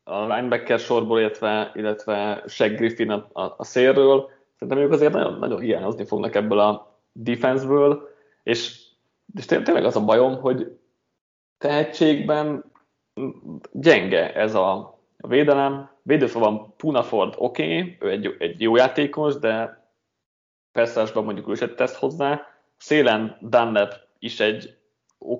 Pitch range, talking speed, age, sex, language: 110-140 Hz, 130 wpm, 20-39, male, Hungarian